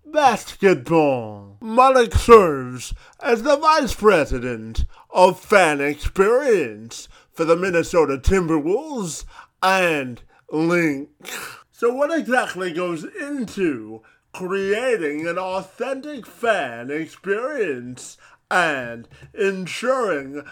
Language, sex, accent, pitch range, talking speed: English, male, American, 150-245 Hz, 80 wpm